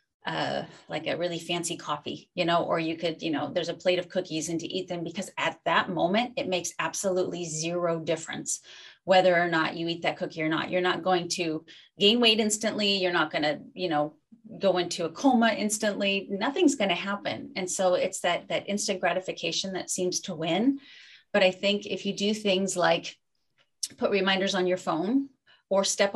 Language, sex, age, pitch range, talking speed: English, female, 30-49, 170-200 Hz, 200 wpm